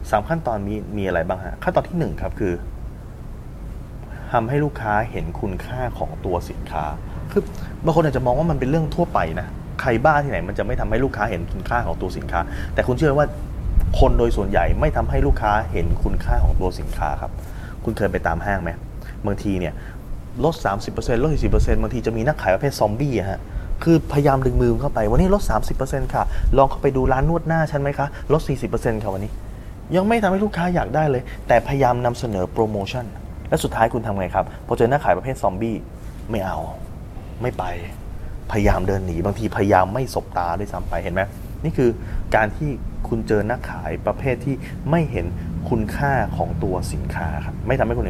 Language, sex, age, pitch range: Thai, male, 20-39, 90-130 Hz